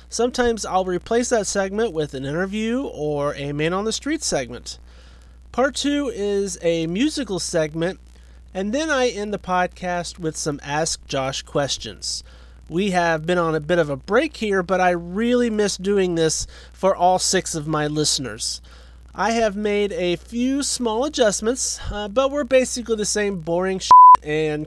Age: 30-49